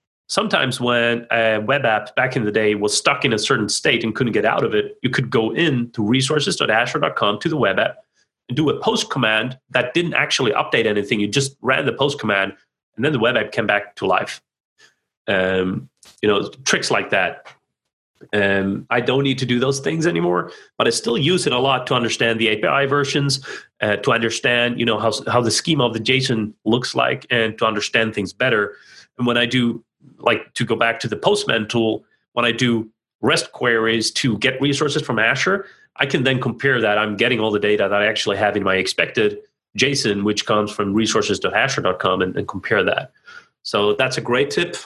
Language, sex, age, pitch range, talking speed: English, male, 30-49, 105-130 Hz, 205 wpm